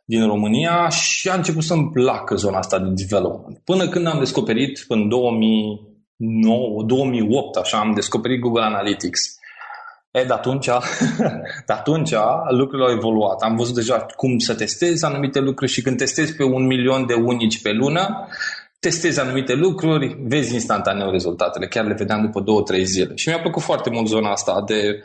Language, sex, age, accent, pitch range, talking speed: Romanian, male, 20-39, native, 110-155 Hz, 165 wpm